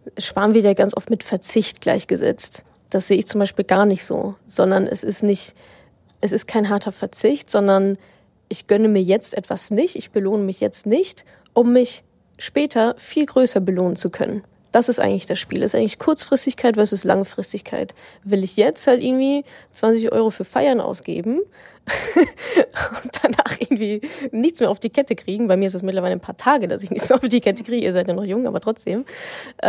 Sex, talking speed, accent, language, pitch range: female, 190 wpm, German, German, 195-250 Hz